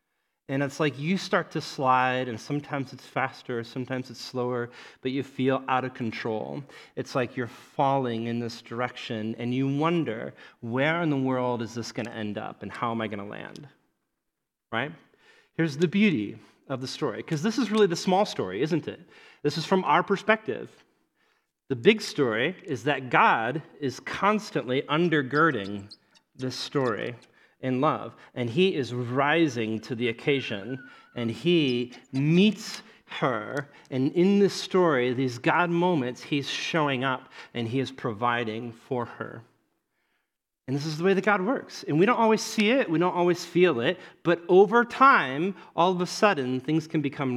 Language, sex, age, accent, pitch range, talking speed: English, male, 30-49, American, 125-180 Hz, 175 wpm